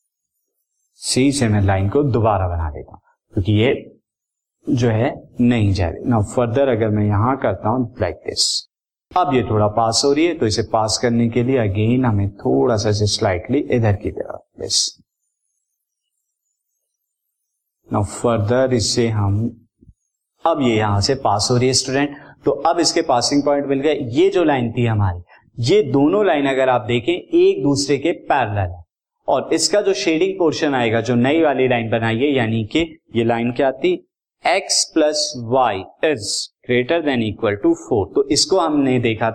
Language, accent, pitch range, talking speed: Hindi, native, 110-145 Hz, 170 wpm